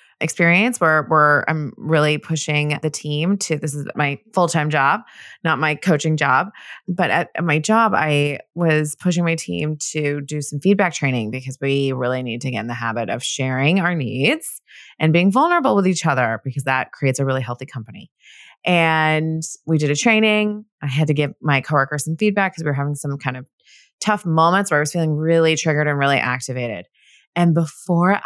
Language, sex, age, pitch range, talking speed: English, female, 20-39, 145-200 Hz, 195 wpm